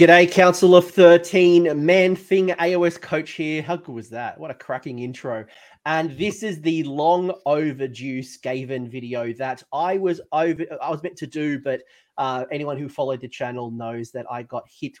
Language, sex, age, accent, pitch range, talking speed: English, male, 30-49, Australian, 125-155 Hz, 185 wpm